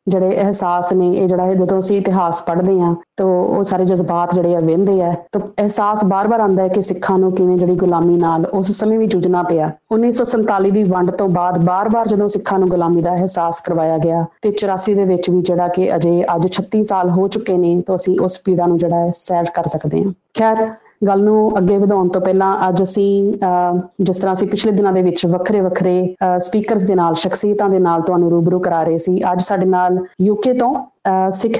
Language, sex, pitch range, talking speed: Punjabi, female, 180-205 Hz, 190 wpm